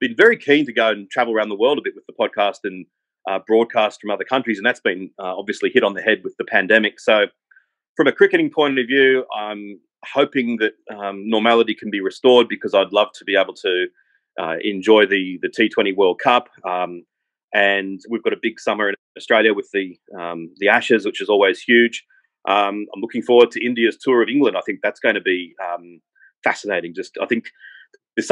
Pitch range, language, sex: 105-145 Hz, English, male